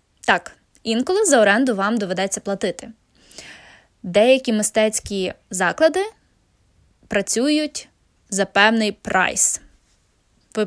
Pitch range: 195-275 Hz